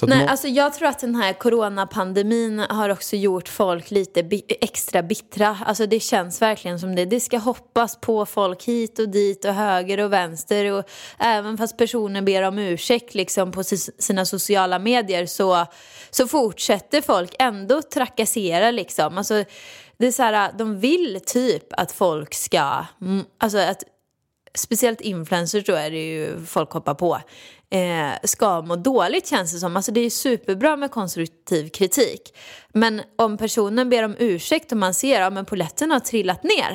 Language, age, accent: Swedish, 20-39, native